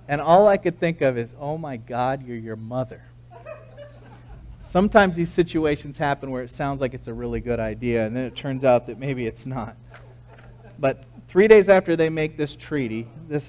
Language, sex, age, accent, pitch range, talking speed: English, male, 40-59, American, 125-170 Hz, 195 wpm